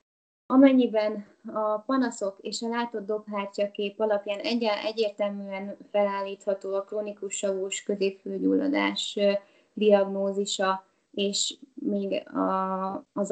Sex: female